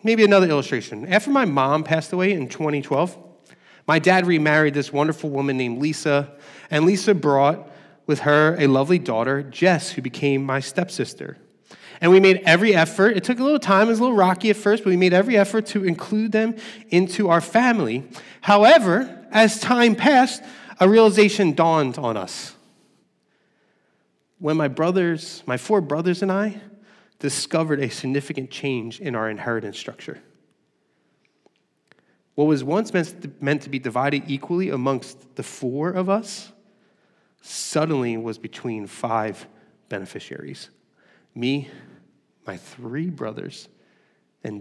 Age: 30-49